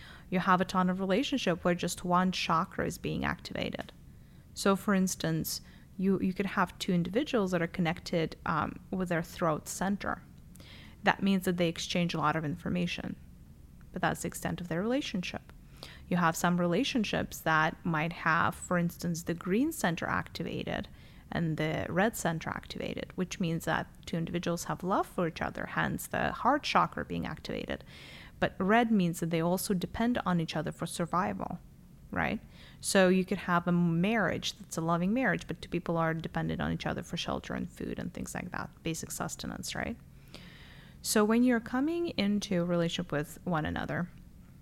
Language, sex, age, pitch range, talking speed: English, female, 10-29, 165-200 Hz, 180 wpm